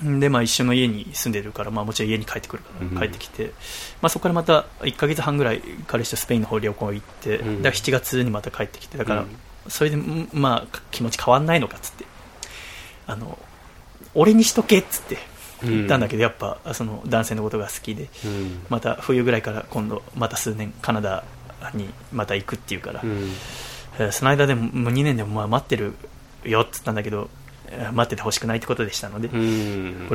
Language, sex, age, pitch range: Japanese, male, 20-39, 105-125 Hz